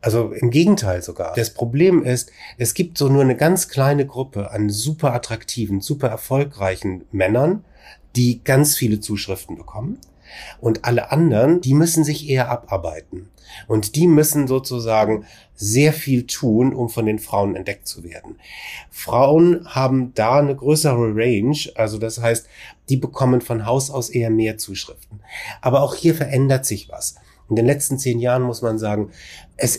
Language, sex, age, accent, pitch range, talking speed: German, male, 30-49, German, 110-140 Hz, 160 wpm